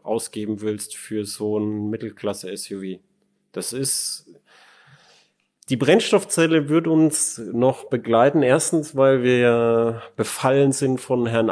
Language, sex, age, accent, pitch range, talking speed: German, male, 30-49, German, 110-135 Hz, 110 wpm